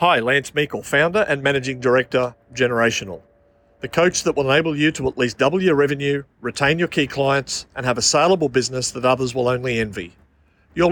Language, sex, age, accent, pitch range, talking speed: English, male, 50-69, Australian, 120-145 Hz, 190 wpm